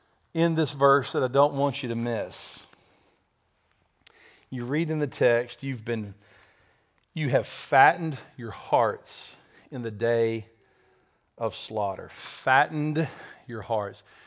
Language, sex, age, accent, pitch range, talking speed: English, male, 50-69, American, 115-150 Hz, 125 wpm